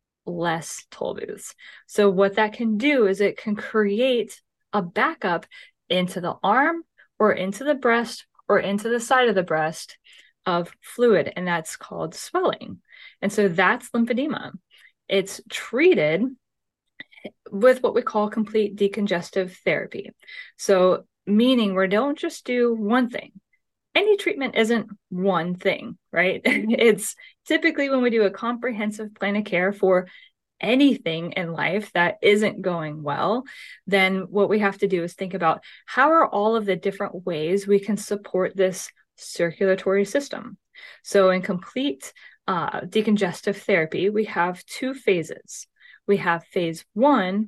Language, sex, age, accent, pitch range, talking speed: English, female, 20-39, American, 185-235 Hz, 145 wpm